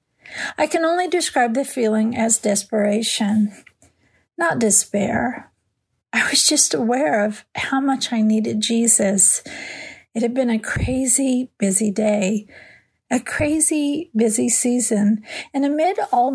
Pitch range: 220-270 Hz